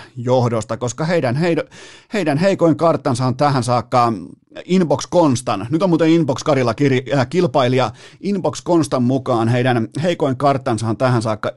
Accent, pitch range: native, 115-145 Hz